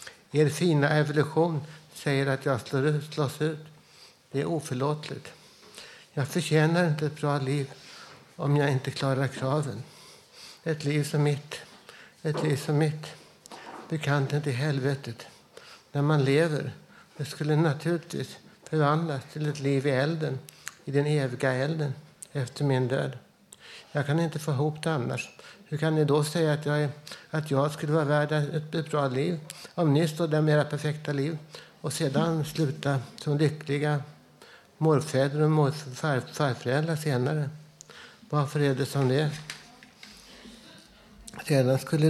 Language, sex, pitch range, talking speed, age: Swedish, male, 140-155 Hz, 140 wpm, 60-79